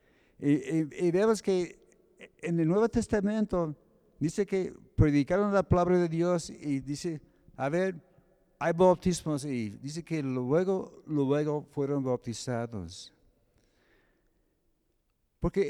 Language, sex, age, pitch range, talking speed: Spanish, male, 60-79, 120-170 Hz, 105 wpm